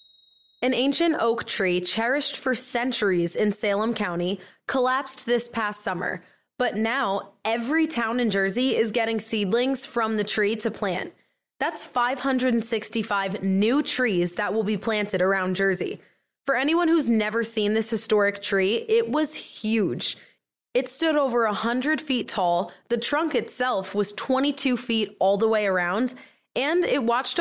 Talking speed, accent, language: 150 wpm, American, English